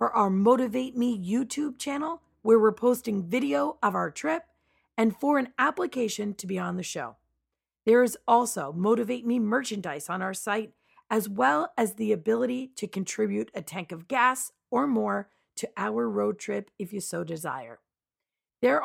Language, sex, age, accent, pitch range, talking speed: English, female, 40-59, American, 190-245 Hz, 170 wpm